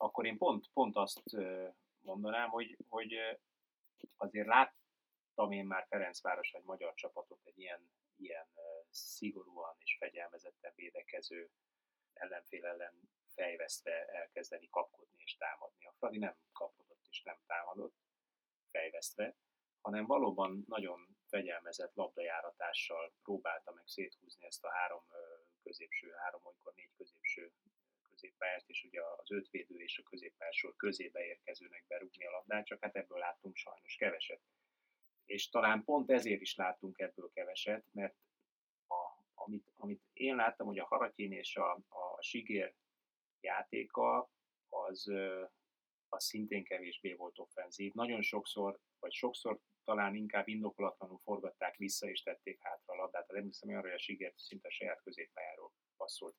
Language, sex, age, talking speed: Hungarian, male, 30-49, 135 wpm